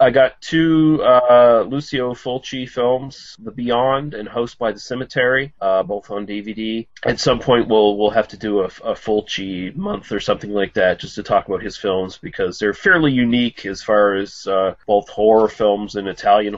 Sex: male